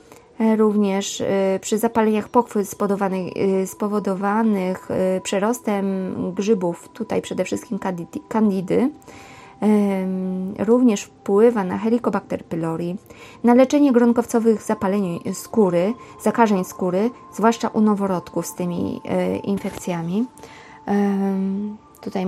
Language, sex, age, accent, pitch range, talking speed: English, female, 30-49, Polish, 195-220 Hz, 85 wpm